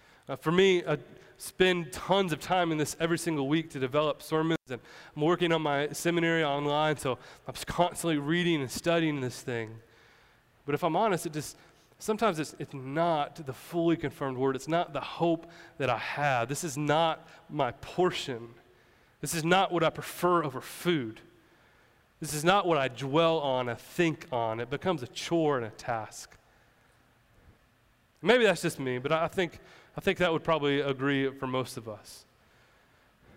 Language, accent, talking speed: English, American, 180 wpm